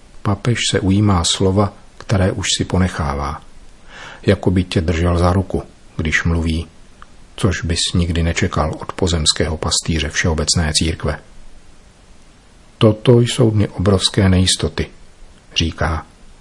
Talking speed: 115 wpm